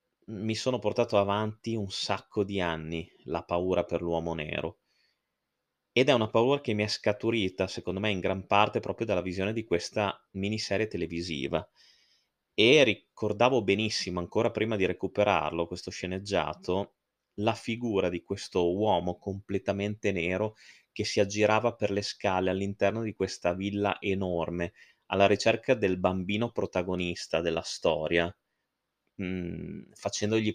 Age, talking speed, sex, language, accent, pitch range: 30-49, 135 wpm, male, Italian, native, 90-110 Hz